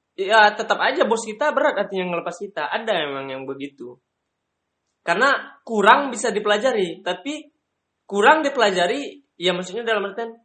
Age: 20-39